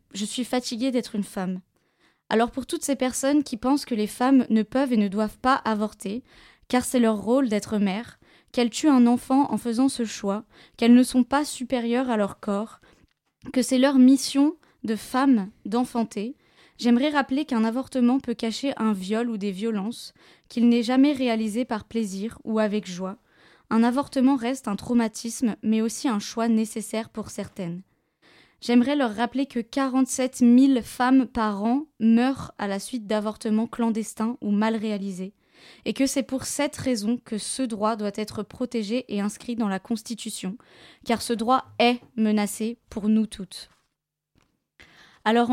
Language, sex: French, female